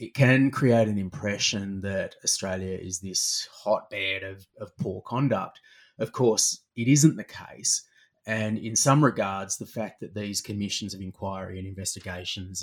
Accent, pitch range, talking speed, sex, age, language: Australian, 95-115 Hz, 155 wpm, male, 30-49, English